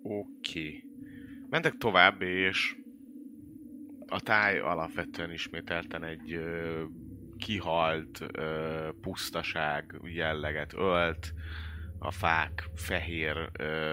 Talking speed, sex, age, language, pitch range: 70 wpm, male, 30-49, Hungarian, 80-95 Hz